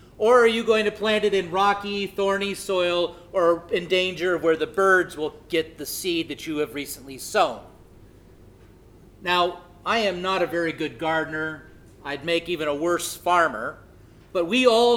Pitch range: 170-215 Hz